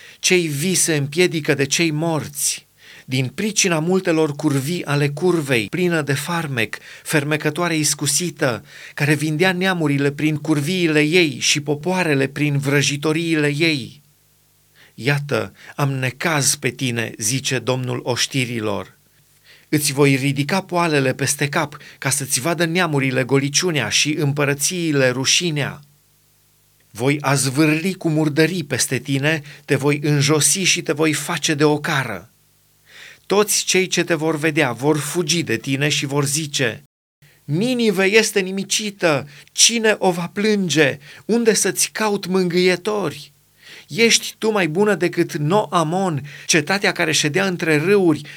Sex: male